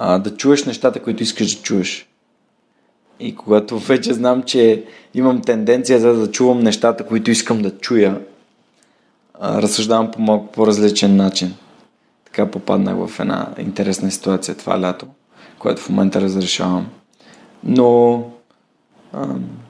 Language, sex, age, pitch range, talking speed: Bulgarian, male, 20-39, 105-125 Hz, 125 wpm